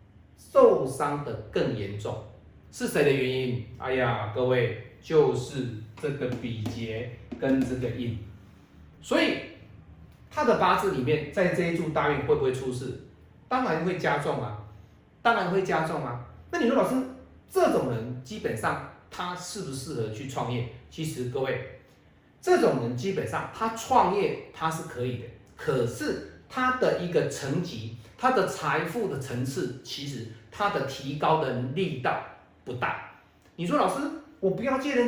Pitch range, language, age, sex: 120-195 Hz, Chinese, 40-59, male